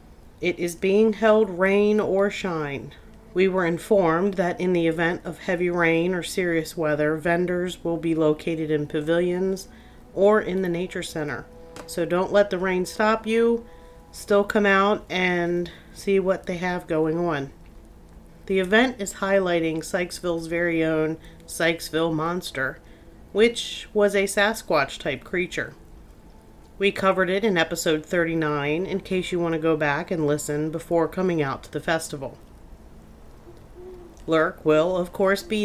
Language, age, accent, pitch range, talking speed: English, 40-59, American, 160-200 Hz, 150 wpm